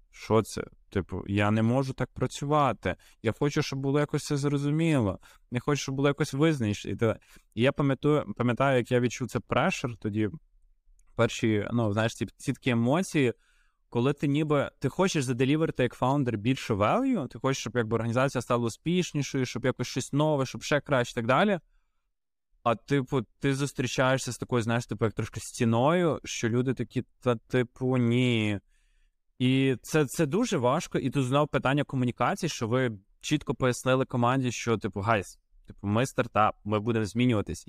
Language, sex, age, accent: Ukrainian, male, 20-39, native